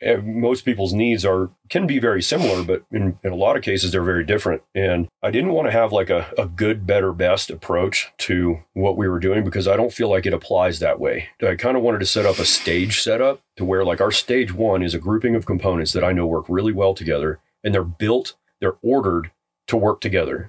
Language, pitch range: English, 90-105 Hz